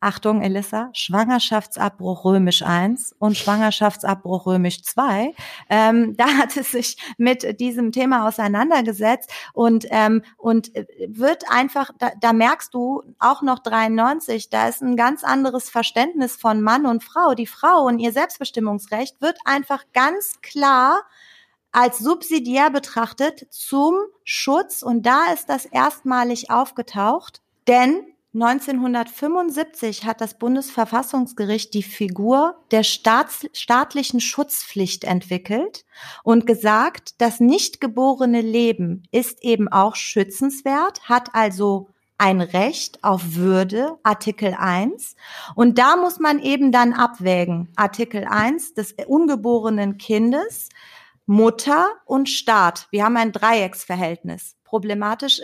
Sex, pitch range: female, 215-275 Hz